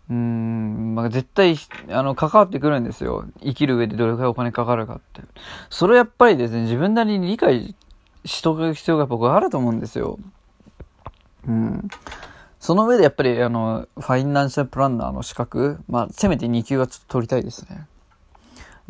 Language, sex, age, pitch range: Japanese, male, 20-39, 120-170 Hz